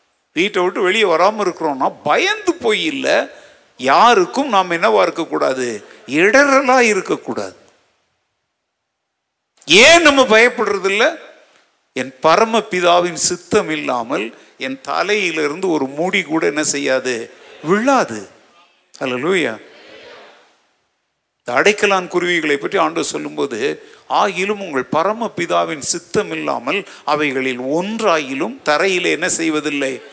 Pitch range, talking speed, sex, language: 165-270 Hz, 100 wpm, male, Tamil